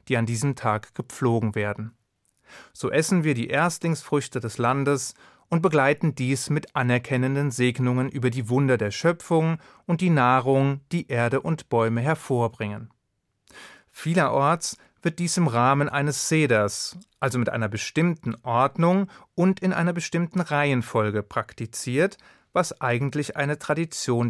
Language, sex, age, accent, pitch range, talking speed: German, male, 30-49, German, 120-160 Hz, 135 wpm